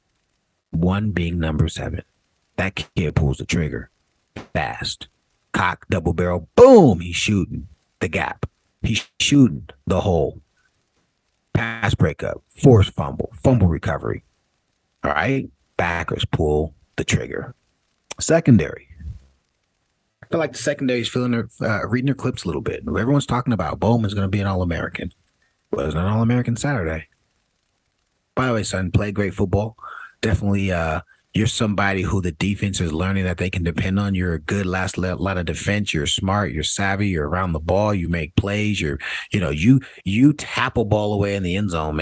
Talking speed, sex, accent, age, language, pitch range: 165 wpm, male, American, 30-49, English, 85-110 Hz